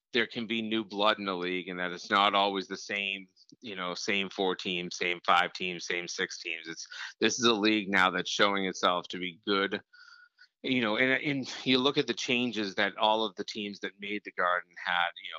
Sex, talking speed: male, 225 wpm